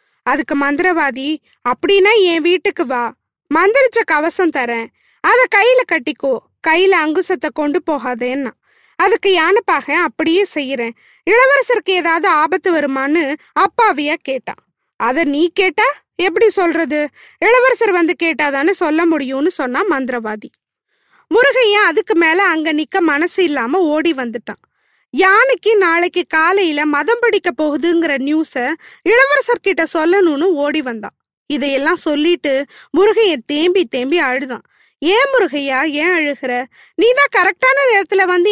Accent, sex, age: native, female, 20-39